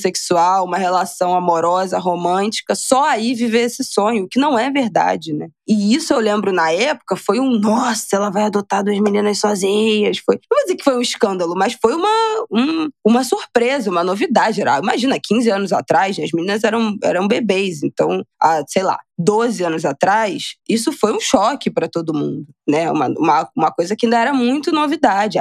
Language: Portuguese